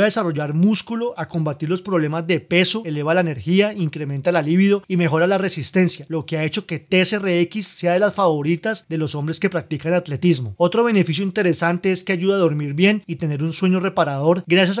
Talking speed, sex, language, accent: 205 wpm, male, Spanish, Colombian